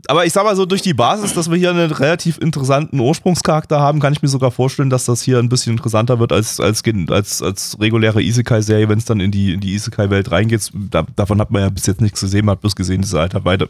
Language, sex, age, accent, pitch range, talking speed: German, male, 20-39, German, 100-120 Hz, 265 wpm